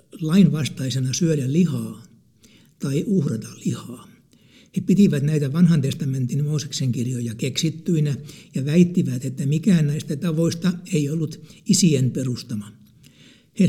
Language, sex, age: Finnish, male, 60-79